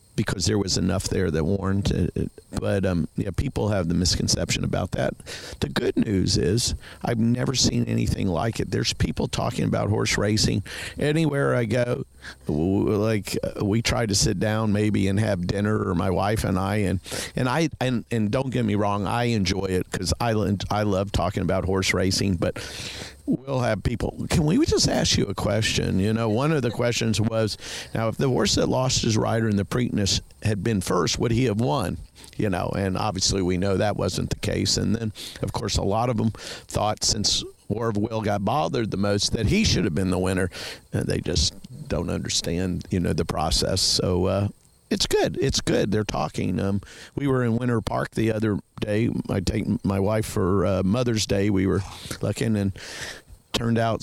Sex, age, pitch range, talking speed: male, 50-69, 95-115 Hz, 200 wpm